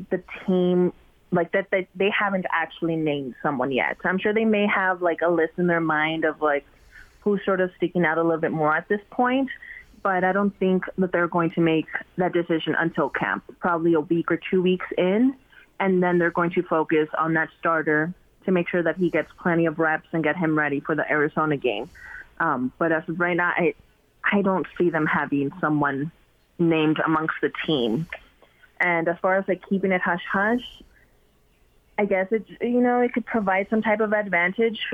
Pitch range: 165-200 Hz